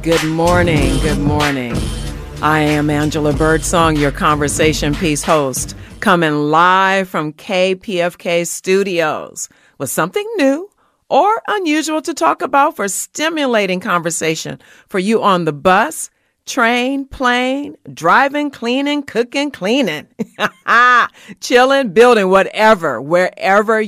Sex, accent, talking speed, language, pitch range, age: female, American, 110 wpm, English, 145-195 Hz, 40-59